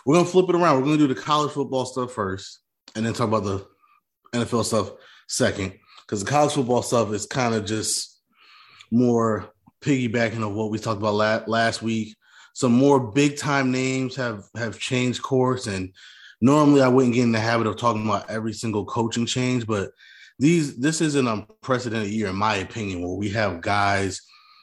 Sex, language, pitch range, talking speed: male, English, 105-125 Hz, 190 wpm